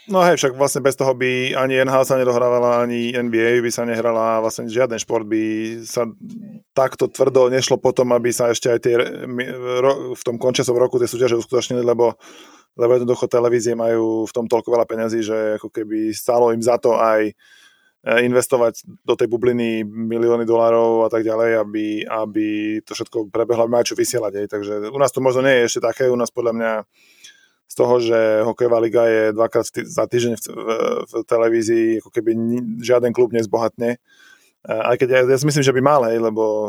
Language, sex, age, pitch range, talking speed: Slovak, male, 20-39, 110-125 Hz, 185 wpm